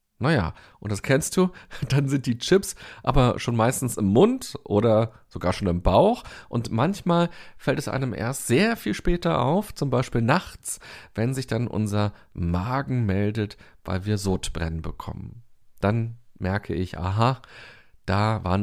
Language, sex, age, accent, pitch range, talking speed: German, male, 40-59, German, 105-145 Hz, 155 wpm